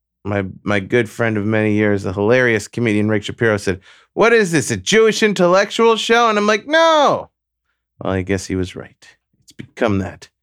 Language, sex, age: English, male, 30-49